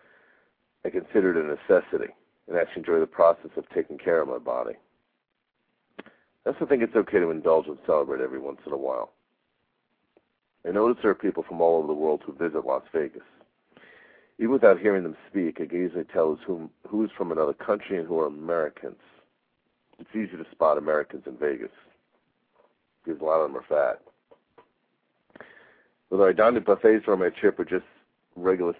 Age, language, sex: 50-69, English, male